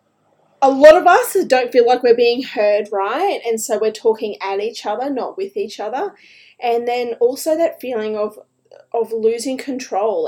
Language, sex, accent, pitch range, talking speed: English, female, Australian, 210-315 Hz, 180 wpm